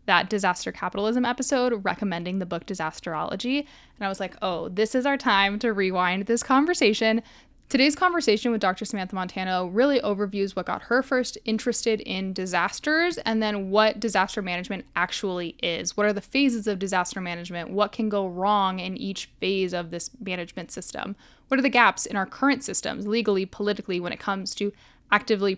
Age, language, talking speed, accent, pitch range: 10-29, English, 180 wpm, American, 190-240 Hz